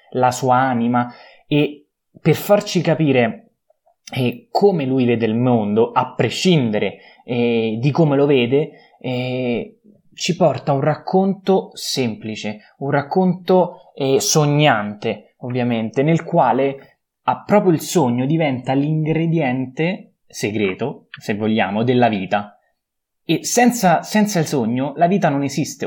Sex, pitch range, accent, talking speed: male, 120-165 Hz, native, 120 wpm